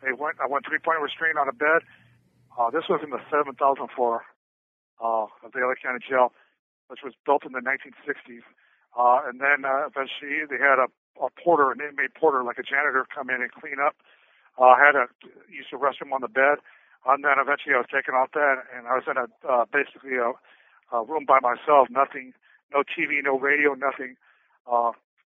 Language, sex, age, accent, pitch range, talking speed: English, male, 60-79, American, 130-150 Hz, 220 wpm